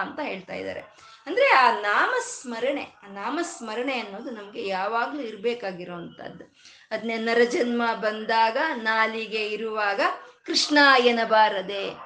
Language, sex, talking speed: Kannada, female, 100 wpm